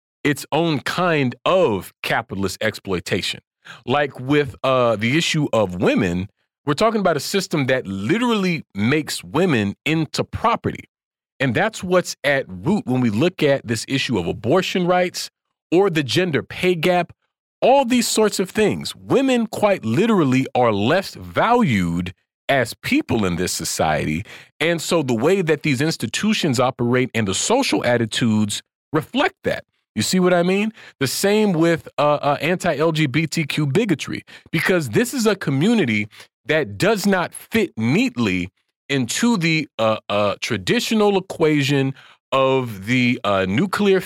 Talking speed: 145 wpm